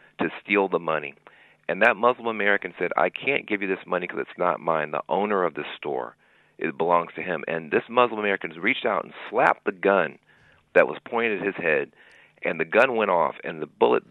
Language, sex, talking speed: English, male, 220 wpm